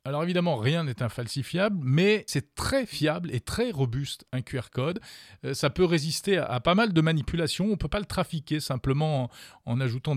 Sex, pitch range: male, 125-175 Hz